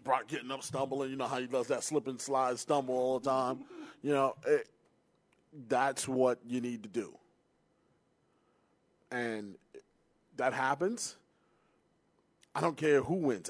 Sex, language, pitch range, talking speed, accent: male, English, 120-145 Hz, 145 wpm, American